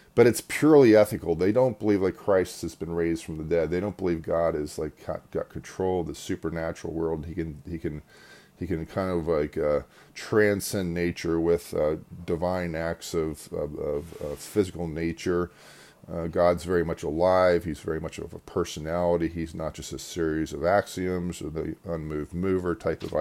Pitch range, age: 80-100 Hz, 40-59